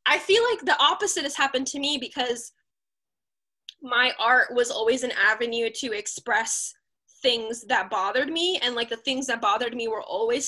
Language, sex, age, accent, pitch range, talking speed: English, female, 10-29, American, 220-265 Hz, 180 wpm